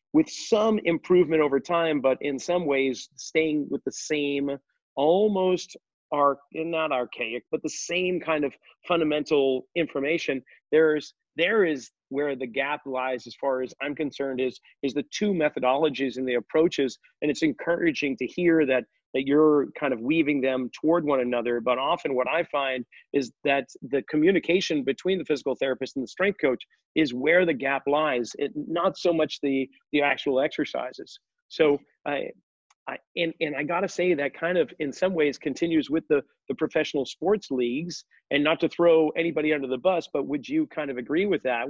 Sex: male